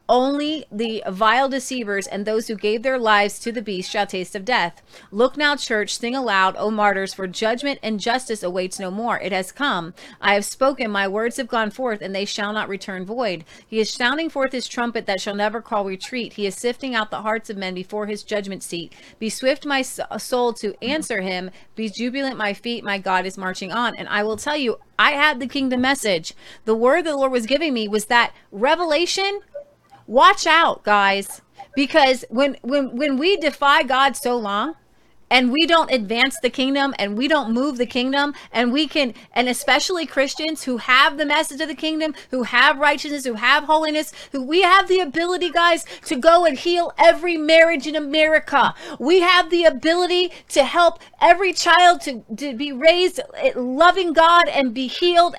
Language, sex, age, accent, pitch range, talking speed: English, female, 30-49, American, 215-305 Hz, 195 wpm